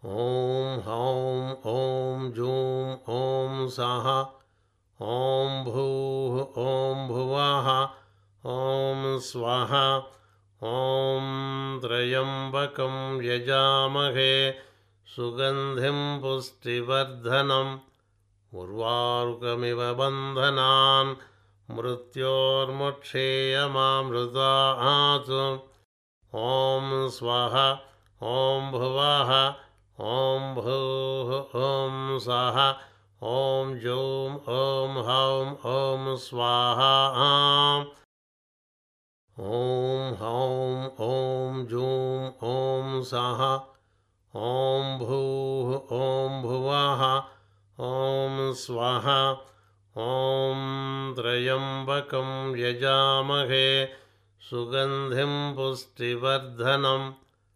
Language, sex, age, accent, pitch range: Telugu, male, 60-79, native, 120-135 Hz